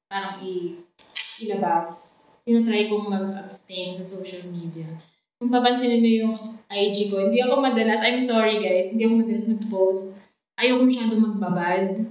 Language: English